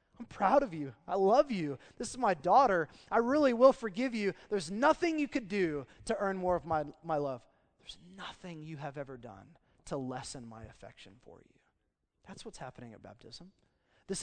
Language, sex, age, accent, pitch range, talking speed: English, male, 20-39, American, 135-190 Hz, 195 wpm